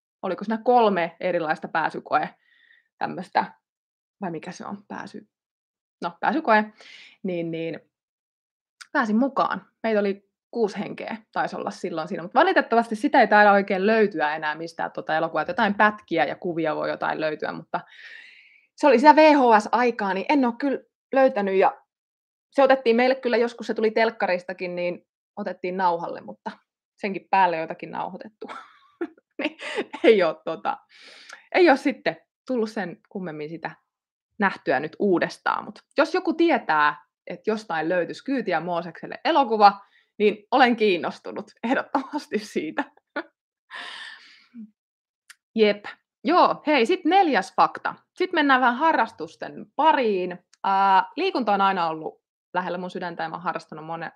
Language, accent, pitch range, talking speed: Finnish, native, 175-270 Hz, 135 wpm